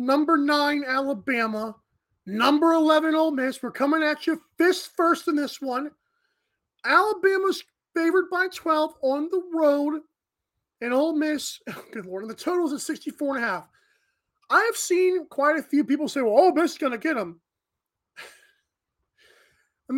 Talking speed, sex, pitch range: 165 wpm, male, 225-305 Hz